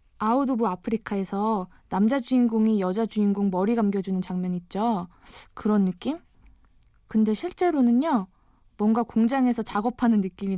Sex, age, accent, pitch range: female, 20-39, native, 195-240 Hz